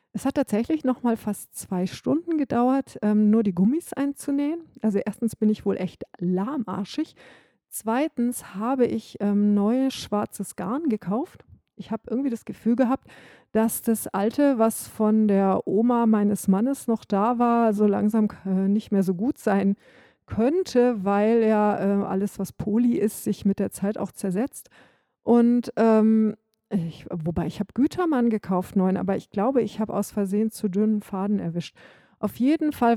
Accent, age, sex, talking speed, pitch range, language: German, 40-59, female, 170 wpm, 195-235 Hz, English